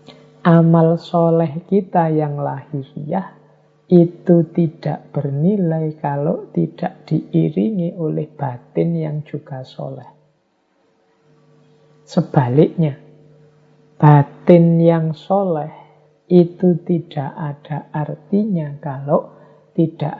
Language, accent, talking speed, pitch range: Indonesian, native, 75 wpm, 145-165 Hz